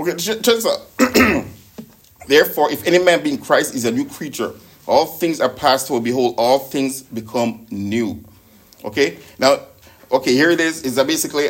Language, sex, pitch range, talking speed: English, male, 105-150 Hz, 160 wpm